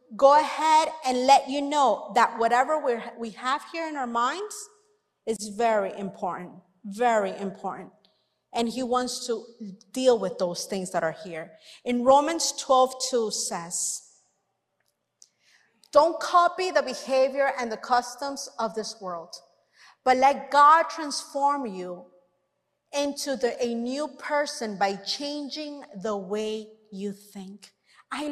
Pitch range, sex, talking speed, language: 210-285 Hz, female, 135 wpm, English